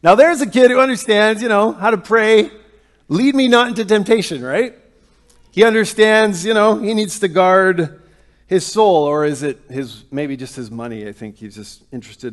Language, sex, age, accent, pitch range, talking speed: English, male, 40-59, American, 150-215 Hz, 195 wpm